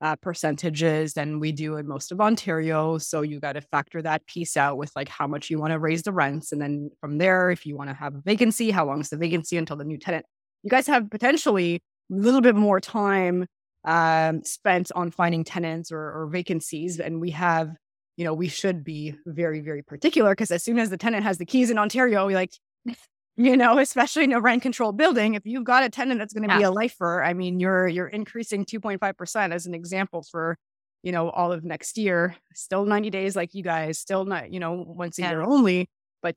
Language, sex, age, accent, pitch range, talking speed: English, female, 20-39, American, 160-200 Hz, 220 wpm